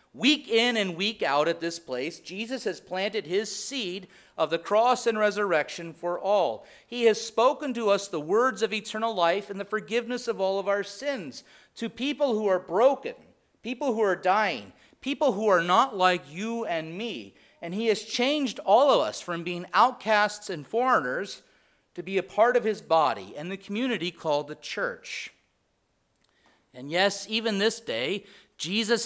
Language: English